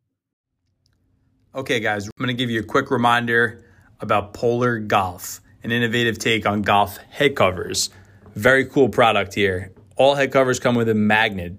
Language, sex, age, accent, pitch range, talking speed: English, male, 20-39, American, 100-120 Hz, 160 wpm